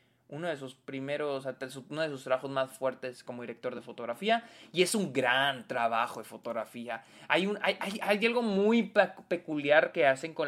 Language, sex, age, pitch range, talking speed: Spanish, male, 20-39, 130-185 Hz, 185 wpm